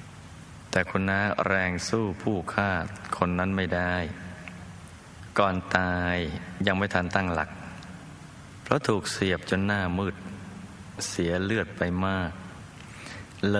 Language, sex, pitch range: Thai, male, 85-100 Hz